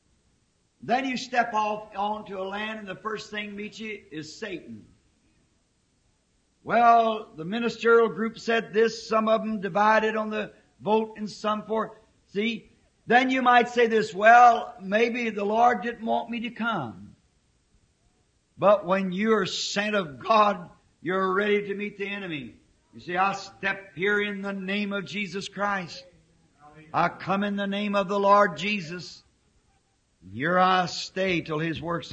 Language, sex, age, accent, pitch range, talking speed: English, male, 50-69, American, 165-215 Hz, 160 wpm